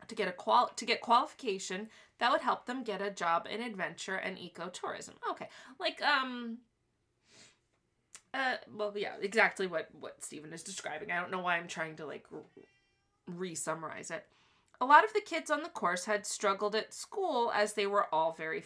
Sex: female